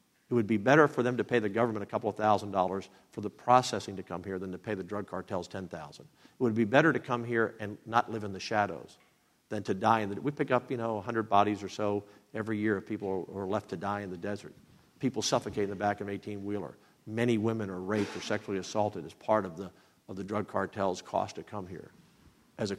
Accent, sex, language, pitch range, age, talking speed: American, male, English, 100-125 Hz, 50-69, 255 wpm